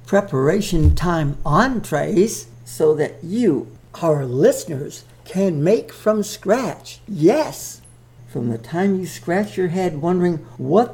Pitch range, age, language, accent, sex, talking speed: 145-210 Hz, 60-79, English, American, male, 120 wpm